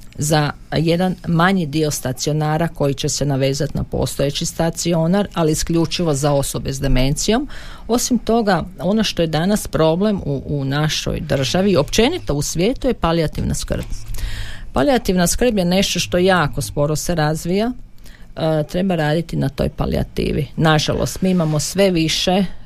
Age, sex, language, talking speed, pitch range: 50-69, female, Croatian, 150 wpm, 150-185 Hz